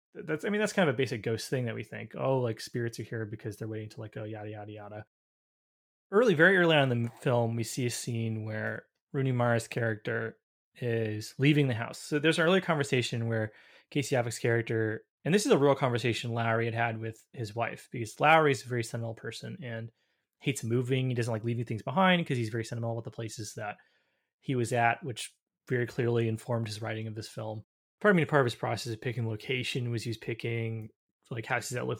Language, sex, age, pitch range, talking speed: English, male, 20-39, 110-135 Hz, 225 wpm